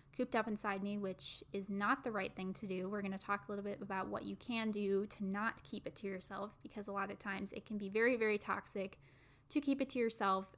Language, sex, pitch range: English, female, 190-215 Hz